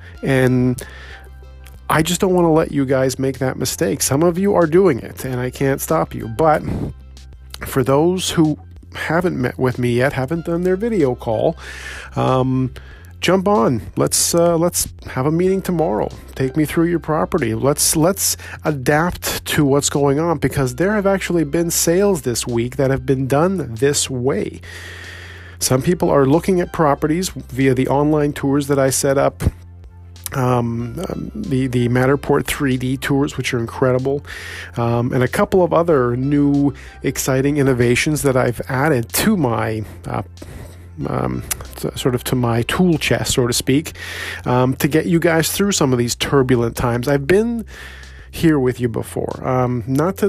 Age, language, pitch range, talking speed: 40-59, English, 115-160 Hz, 170 wpm